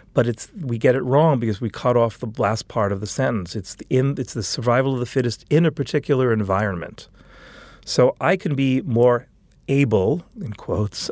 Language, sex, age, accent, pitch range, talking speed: English, male, 40-59, American, 105-130 Hz, 200 wpm